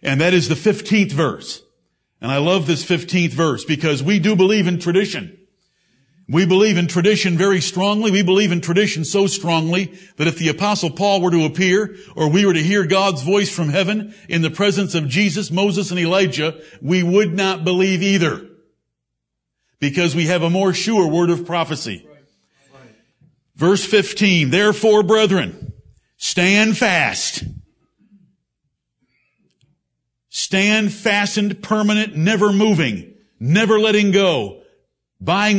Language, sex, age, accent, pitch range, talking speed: English, male, 60-79, American, 160-200 Hz, 140 wpm